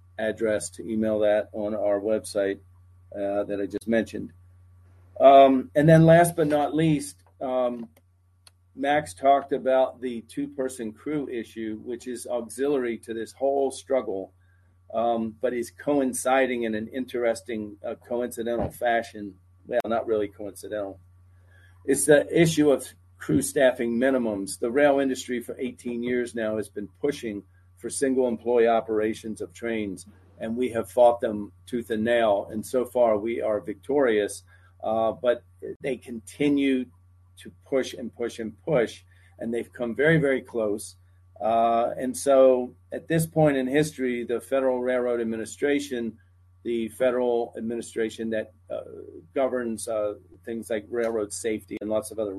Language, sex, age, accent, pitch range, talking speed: English, male, 40-59, American, 100-130 Hz, 150 wpm